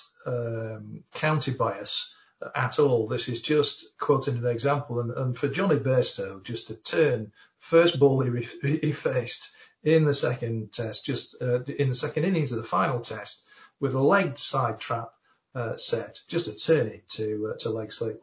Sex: male